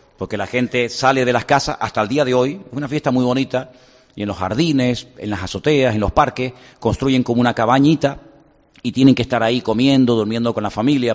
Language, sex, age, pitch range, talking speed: Spanish, male, 40-59, 120-165 Hz, 220 wpm